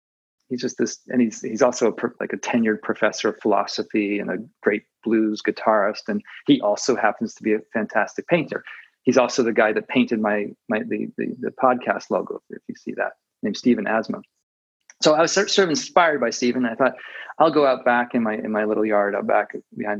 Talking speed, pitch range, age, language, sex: 220 wpm, 110-140 Hz, 40-59, English, male